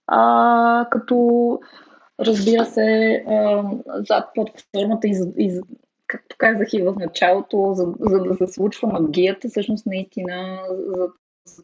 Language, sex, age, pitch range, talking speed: Bulgarian, female, 20-39, 170-210 Hz, 110 wpm